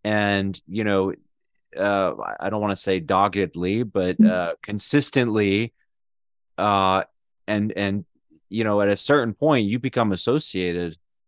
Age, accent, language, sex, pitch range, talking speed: 30-49, American, English, male, 95-115 Hz, 135 wpm